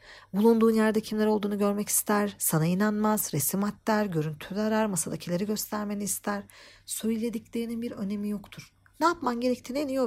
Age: 50-69